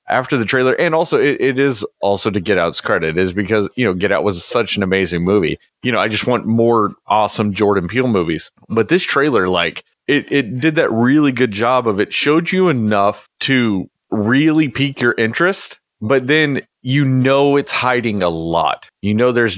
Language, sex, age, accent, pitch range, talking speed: English, male, 30-49, American, 105-130 Hz, 200 wpm